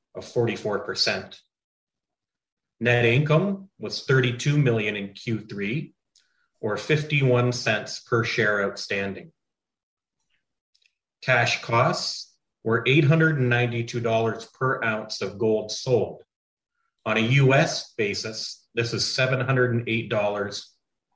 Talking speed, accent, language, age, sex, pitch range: 85 wpm, American, English, 30-49, male, 105-125 Hz